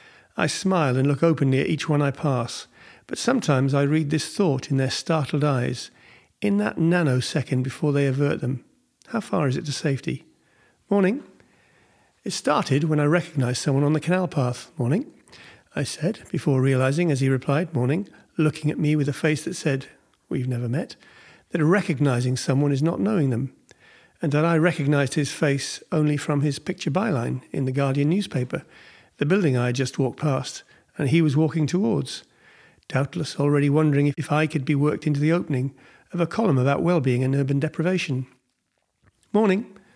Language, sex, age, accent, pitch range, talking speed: English, male, 50-69, British, 135-165 Hz, 180 wpm